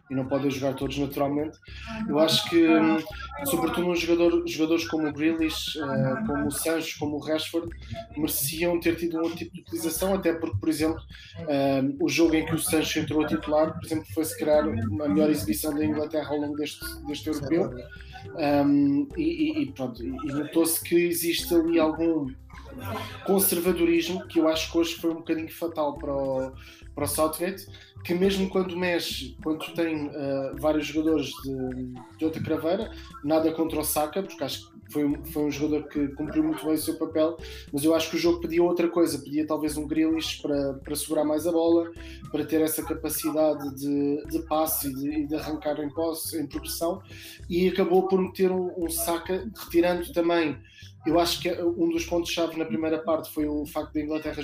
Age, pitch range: 20-39, 145-165 Hz